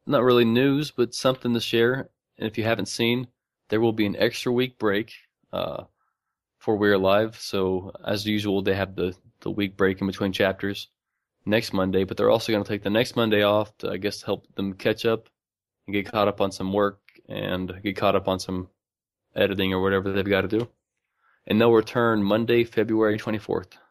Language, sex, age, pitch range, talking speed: English, male, 20-39, 95-115 Hz, 205 wpm